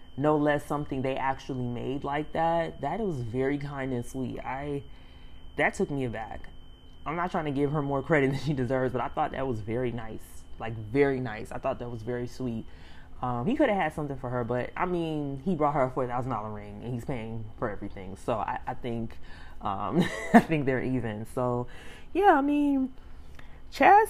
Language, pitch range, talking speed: English, 120-150 Hz, 205 wpm